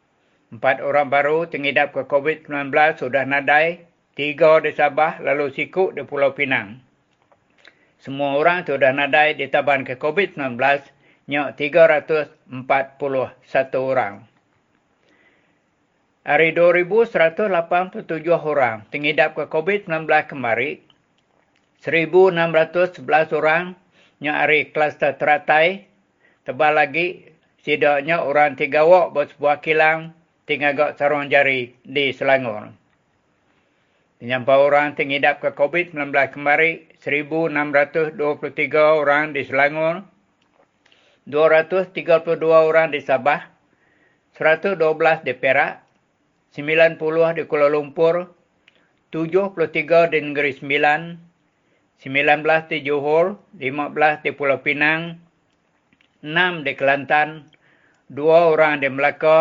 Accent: Indonesian